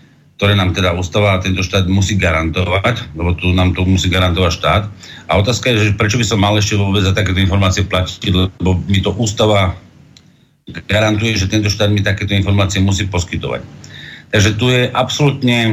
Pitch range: 100-115 Hz